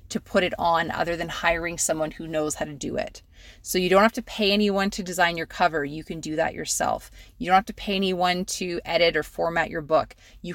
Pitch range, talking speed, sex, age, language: 165-190 Hz, 245 wpm, female, 30-49, English